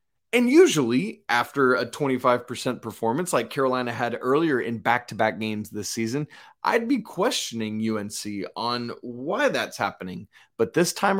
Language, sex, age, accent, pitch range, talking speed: English, male, 30-49, American, 115-190 Hz, 140 wpm